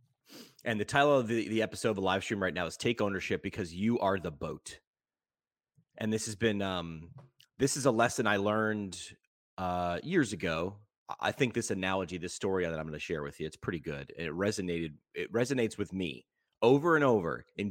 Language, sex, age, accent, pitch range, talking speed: English, male, 30-49, American, 90-125 Hz, 205 wpm